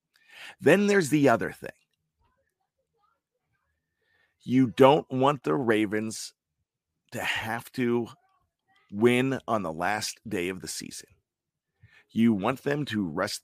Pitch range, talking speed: 100-150 Hz, 115 wpm